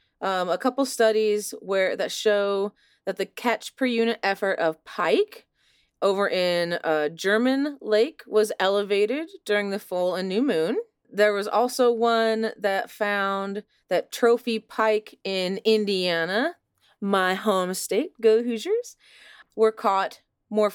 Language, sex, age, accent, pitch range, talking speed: English, female, 30-49, American, 180-220 Hz, 130 wpm